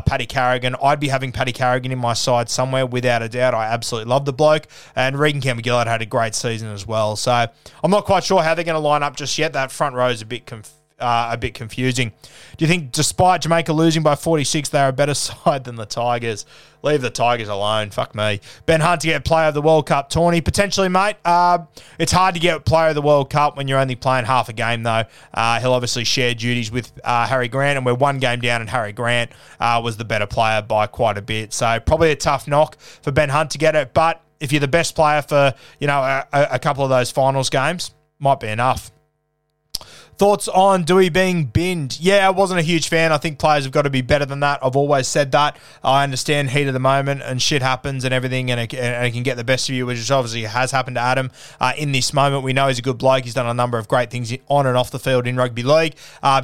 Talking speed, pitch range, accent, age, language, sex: 250 wpm, 120-150 Hz, Australian, 20-39, English, male